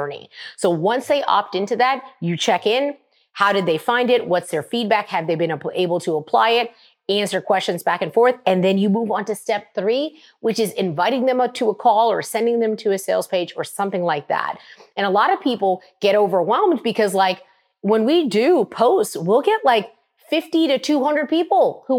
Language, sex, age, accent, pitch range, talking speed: English, female, 30-49, American, 185-250 Hz, 205 wpm